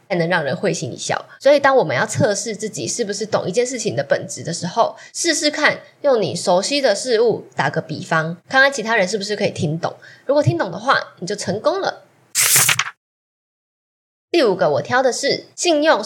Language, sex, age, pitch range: Chinese, female, 10-29, 185-275 Hz